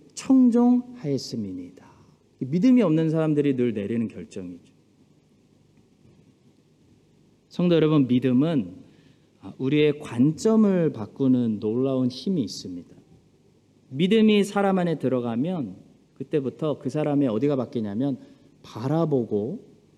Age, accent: 40-59, native